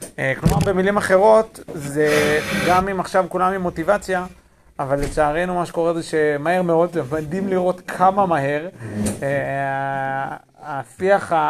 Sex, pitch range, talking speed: male, 150-180 Hz, 115 wpm